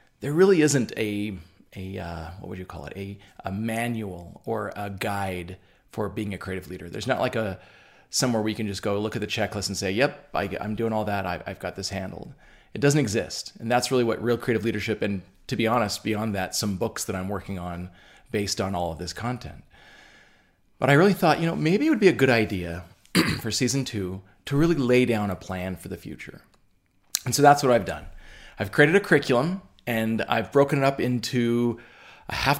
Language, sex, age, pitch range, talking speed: English, male, 30-49, 100-125 Hz, 220 wpm